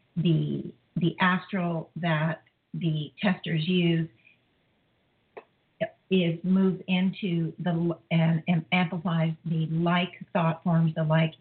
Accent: American